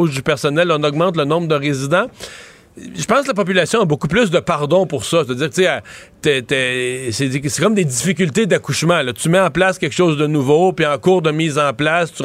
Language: French